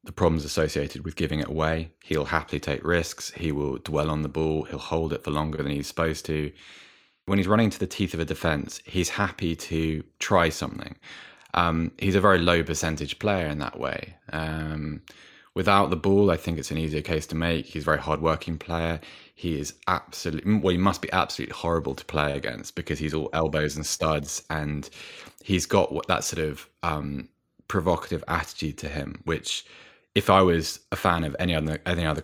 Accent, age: British, 20-39